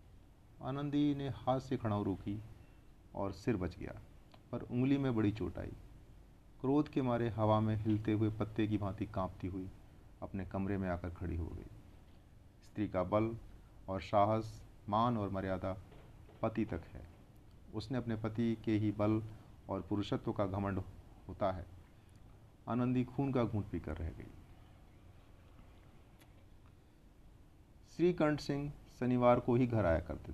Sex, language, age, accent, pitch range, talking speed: male, Hindi, 40-59, native, 95-110 Hz, 145 wpm